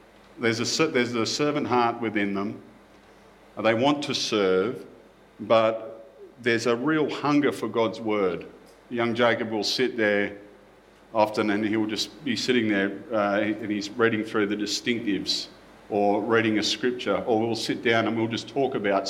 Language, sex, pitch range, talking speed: English, male, 105-120 Hz, 160 wpm